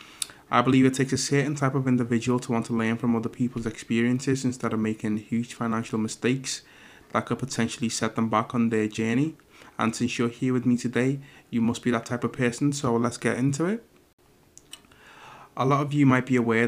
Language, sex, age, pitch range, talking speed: English, male, 20-39, 115-125 Hz, 210 wpm